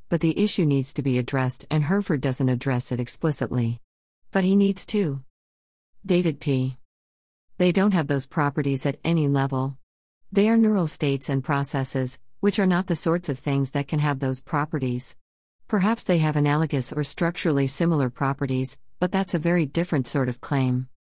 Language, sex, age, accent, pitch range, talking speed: English, female, 50-69, American, 130-165 Hz, 175 wpm